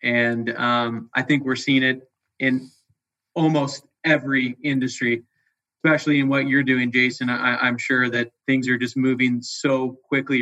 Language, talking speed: English, 155 wpm